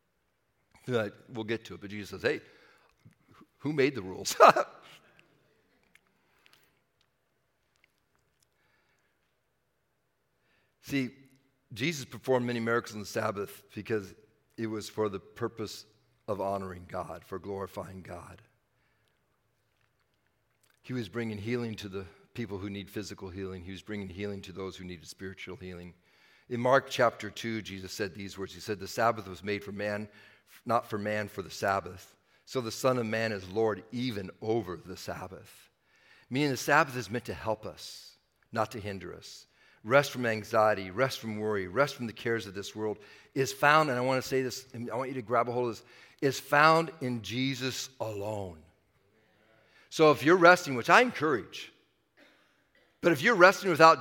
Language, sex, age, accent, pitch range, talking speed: English, male, 60-79, American, 100-130 Hz, 160 wpm